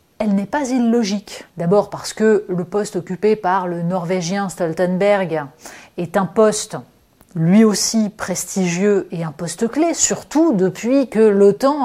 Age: 30-49